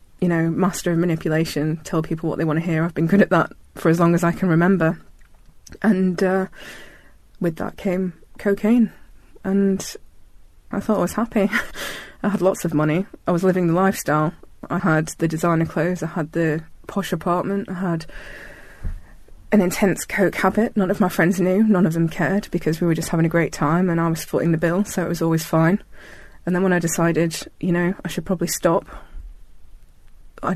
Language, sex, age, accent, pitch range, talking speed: English, female, 20-39, British, 160-190 Hz, 200 wpm